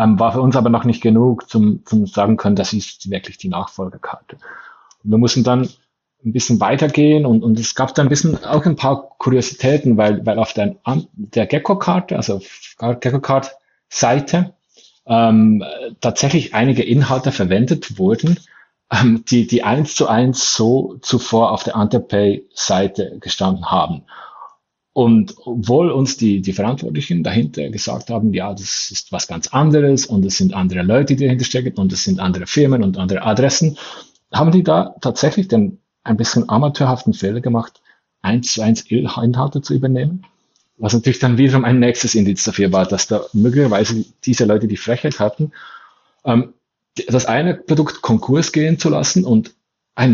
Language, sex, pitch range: German, male, 110-140 Hz